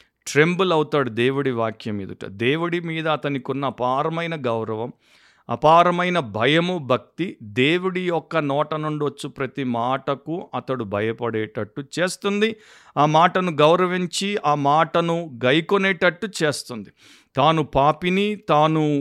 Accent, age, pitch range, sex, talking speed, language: native, 50-69, 135-170 Hz, male, 105 wpm, Telugu